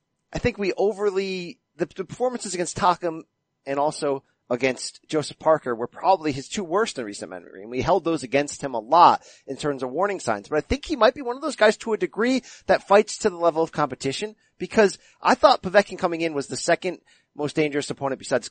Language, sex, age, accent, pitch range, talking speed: English, male, 30-49, American, 135-185 Hz, 215 wpm